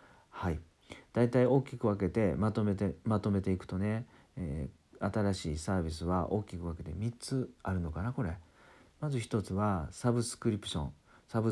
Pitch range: 85-115 Hz